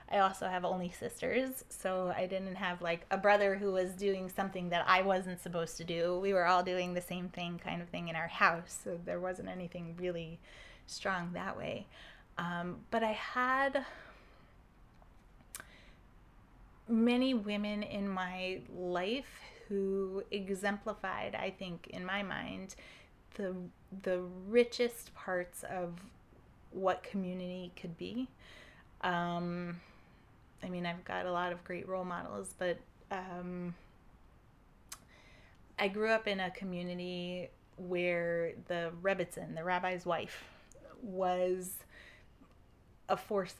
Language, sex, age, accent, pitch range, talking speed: English, female, 20-39, American, 175-200 Hz, 130 wpm